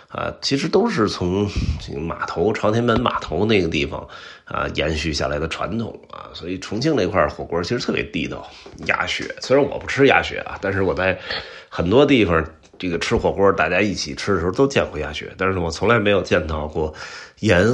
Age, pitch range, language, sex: 30-49, 80-105 Hz, Chinese, male